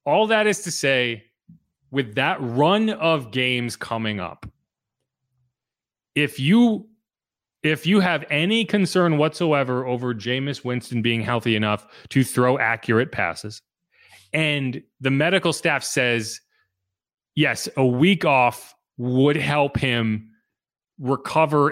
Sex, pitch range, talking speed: male, 120-160 Hz, 120 wpm